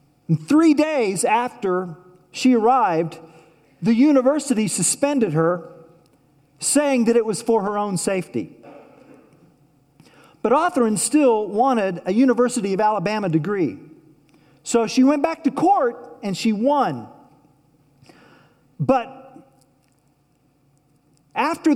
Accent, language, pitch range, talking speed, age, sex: American, English, 160-260 Hz, 105 wpm, 50-69, male